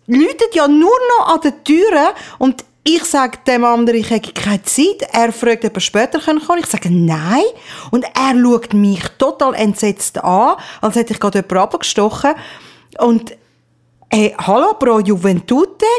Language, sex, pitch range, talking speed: German, female, 205-270 Hz, 160 wpm